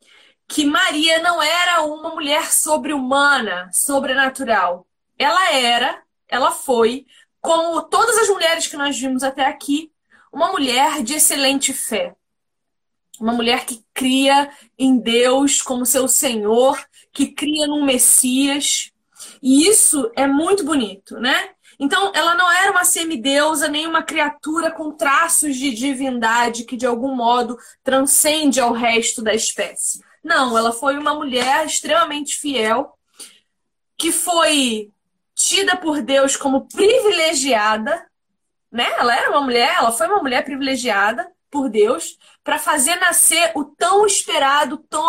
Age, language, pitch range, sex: 20-39, Portuguese, 255-330 Hz, female